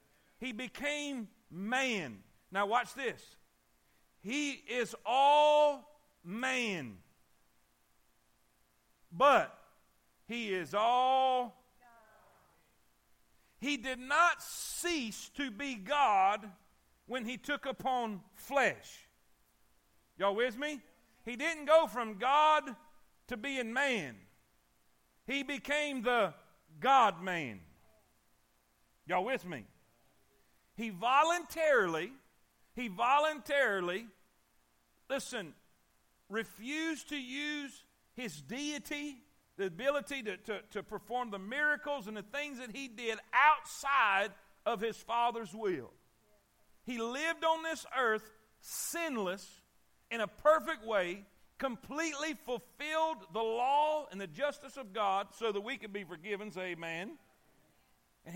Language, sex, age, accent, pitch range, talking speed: English, male, 50-69, American, 185-285 Hz, 105 wpm